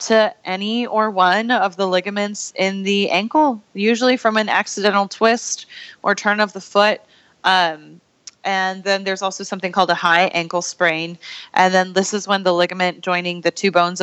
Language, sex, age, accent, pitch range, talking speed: English, female, 20-39, American, 165-190 Hz, 180 wpm